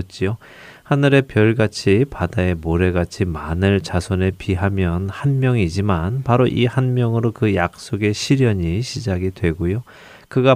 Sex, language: male, Korean